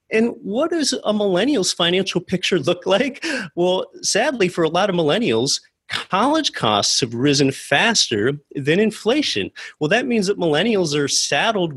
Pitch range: 135-215 Hz